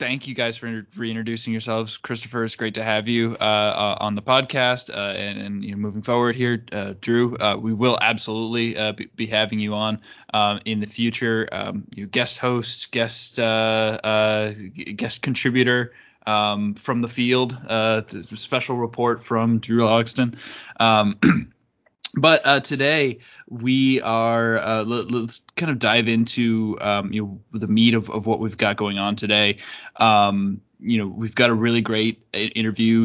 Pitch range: 105-120 Hz